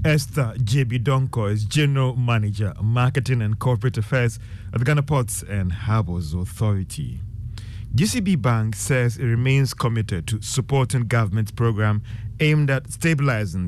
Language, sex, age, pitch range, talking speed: English, male, 30-49, 110-170 Hz, 135 wpm